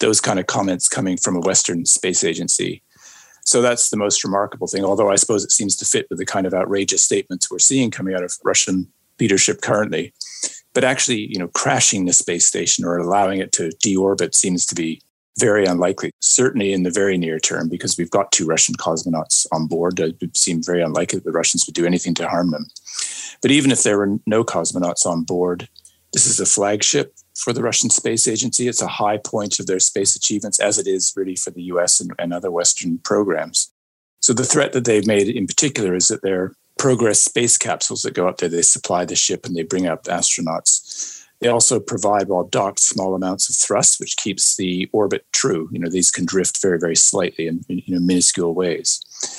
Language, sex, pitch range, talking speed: English, male, 90-105 Hz, 215 wpm